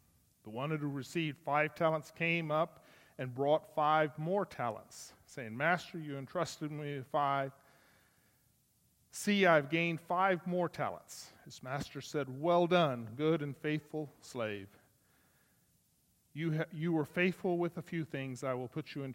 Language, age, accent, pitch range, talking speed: English, 40-59, American, 130-170 Hz, 155 wpm